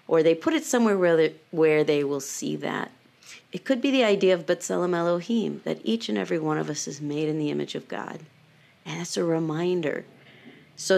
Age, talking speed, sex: 40-59, 210 wpm, female